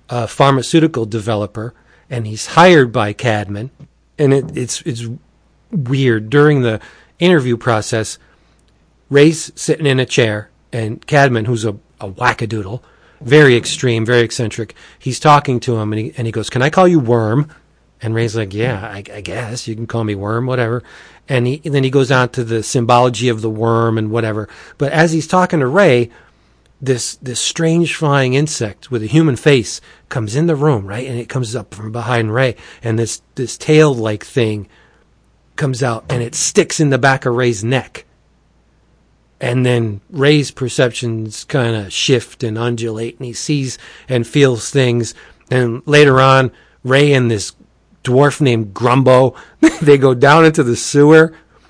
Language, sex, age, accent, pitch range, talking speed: English, male, 40-59, American, 115-145 Hz, 170 wpm